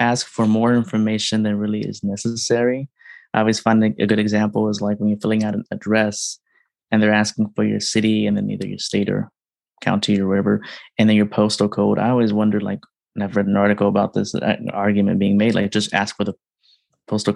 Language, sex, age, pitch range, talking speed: English, male, 20-39, 100-110 Hz, 220 wpm